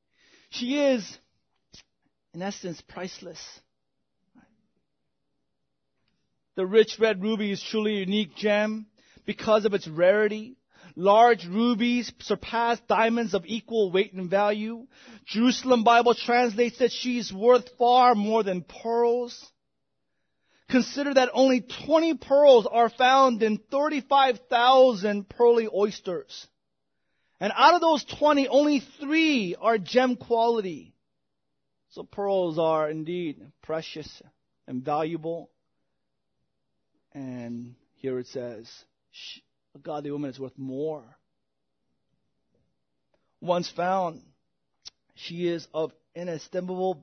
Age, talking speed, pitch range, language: 30-49, 105 wpm, 145-235 Hz, English